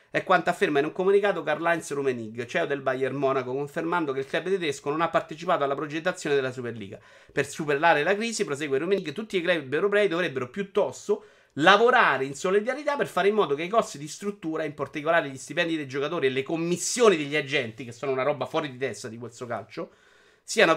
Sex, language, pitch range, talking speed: male, Italian, 145-215 Hz, 200 wpm